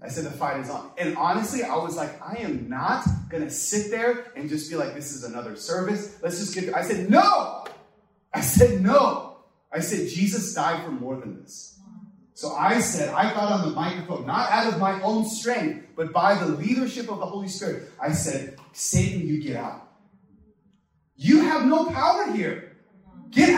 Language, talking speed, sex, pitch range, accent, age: English, 200 wpm, male, 180-250 Hz, American, 30-49